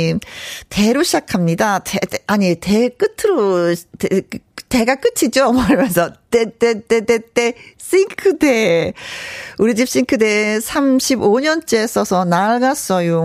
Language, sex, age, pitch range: Korean, female, 40-59, 180-260 Hz